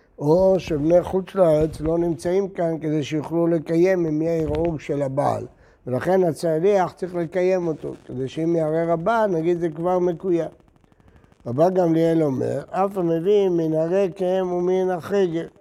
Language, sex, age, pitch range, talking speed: Hebrew, male, 60-79, 145-190 Hz, 145 wpm